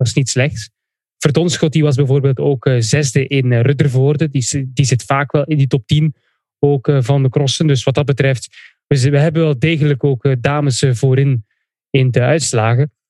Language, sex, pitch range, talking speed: English, male, 135-160 Hz, 200 wpm